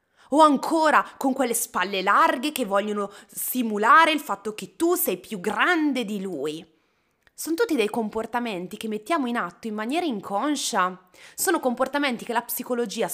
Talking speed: 155 wpm